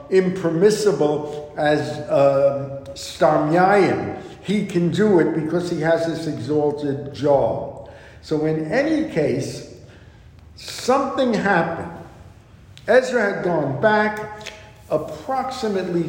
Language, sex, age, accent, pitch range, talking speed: English, male, 60-79, American, 150-200 Hz, 95 wpm